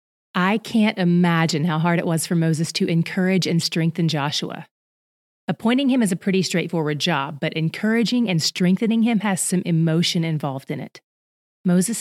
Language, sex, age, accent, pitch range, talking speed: English, female, 30-49, American, 165-205 Hz, 165 wpm